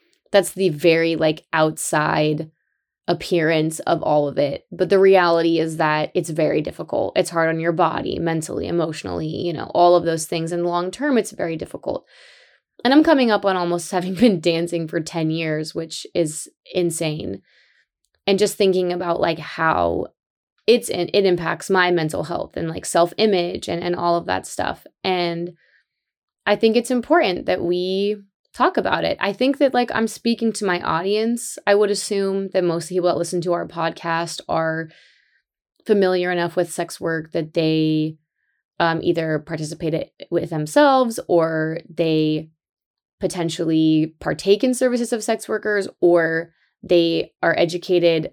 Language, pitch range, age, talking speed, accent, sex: English, 165-195 Hz, 20-39, 160 wpm, American, female